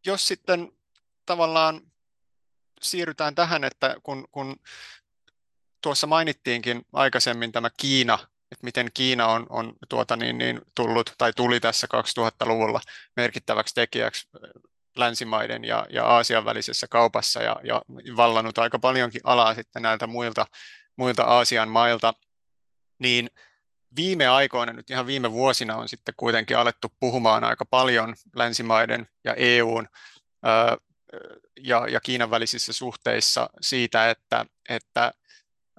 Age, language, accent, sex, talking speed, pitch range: 30-49, Finnish, native, male, 115 wpm, 115-130 Hz